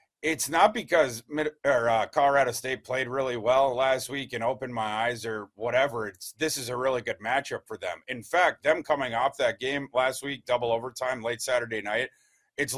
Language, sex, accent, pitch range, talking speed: English, male, American, 125-145 Hz, 190 wpm